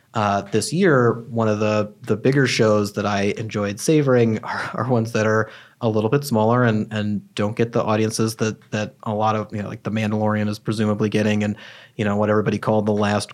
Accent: American